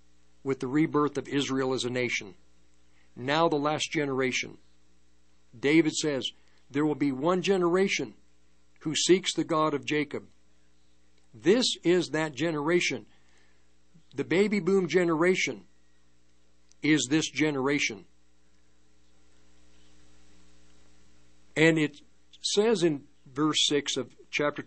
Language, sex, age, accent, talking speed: English, male, 60-79, American, 105 wpm